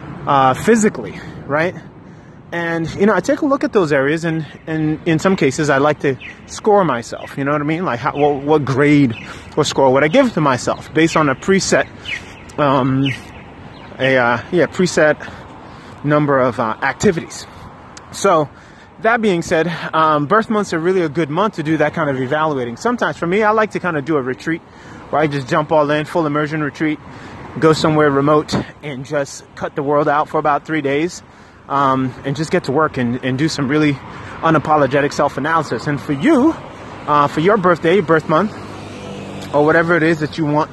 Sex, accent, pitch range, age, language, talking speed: male, American, 140-170 Hz, 30-49, English, 195 wpm